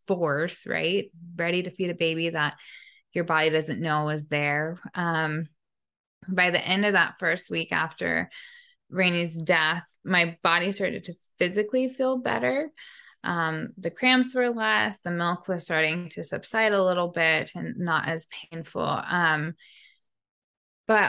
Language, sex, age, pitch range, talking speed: English, female, 20-39, 165-190 Hz, 150 wpm